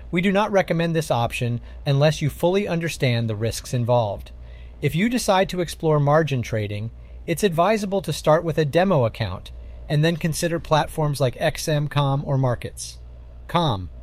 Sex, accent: male, American